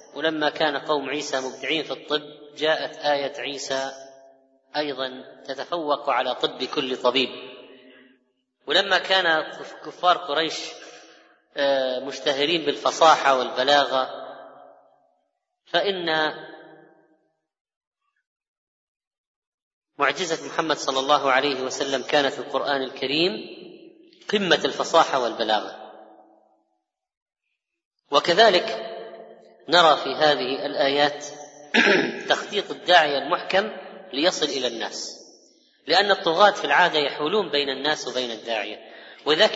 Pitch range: 130-160 Hz